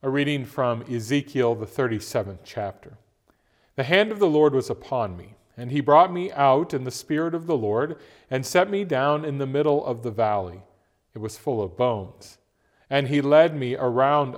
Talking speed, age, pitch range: 190 wpm, 40-59, 115-145 Hz